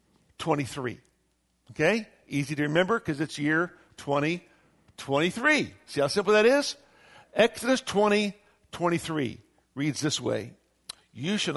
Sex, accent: male, American